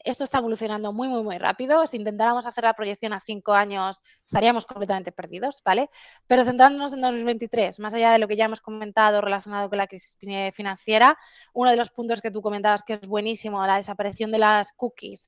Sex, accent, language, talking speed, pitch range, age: female, Spanish, Spanish, 200 wpm, 205-240 Hz, 20-39